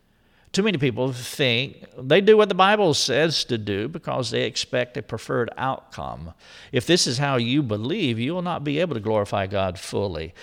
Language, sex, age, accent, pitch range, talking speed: English, male, 50-69, American, 115-150 Hz, 190 wpm